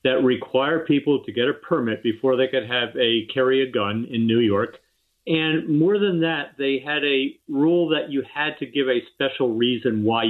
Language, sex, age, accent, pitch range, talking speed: English, male, 50-69, American, 115-145 Hz, 205 wpm